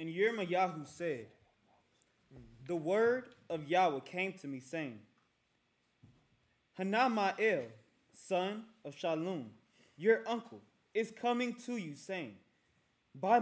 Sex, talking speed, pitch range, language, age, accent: male, 105 wpm, 165-220 Hz, English, 20-39, American